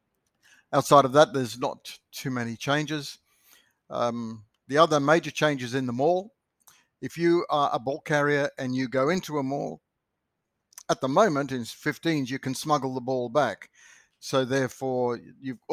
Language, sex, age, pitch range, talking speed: English, male, 60-79, 120-145 Hz, 160 wpm